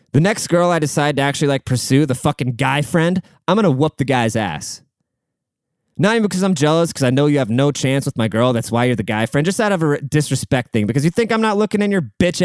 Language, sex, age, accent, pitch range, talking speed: English, male, 20-39, American, 130-170 Hz, 270 wpm